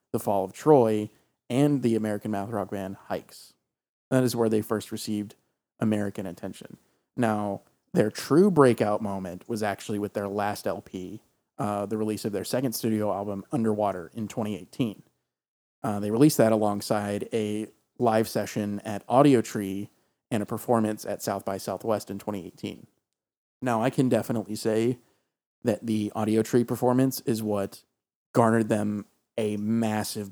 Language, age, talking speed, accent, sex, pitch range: English, 30-49, 150 wpm, American, male, 105-120 Hz